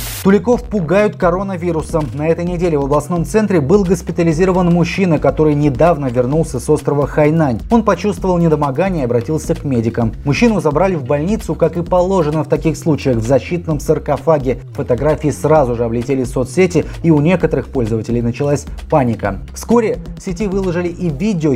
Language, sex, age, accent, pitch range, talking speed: Russian, male, 30-49, native, 130-165 Hz, 155 wpm